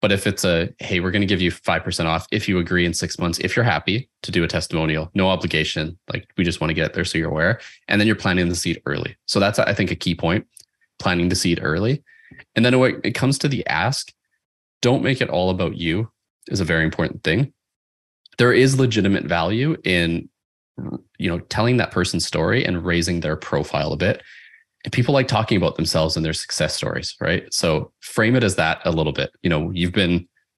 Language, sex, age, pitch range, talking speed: English, male, 20-39, 85-105 Hz, 225 wpm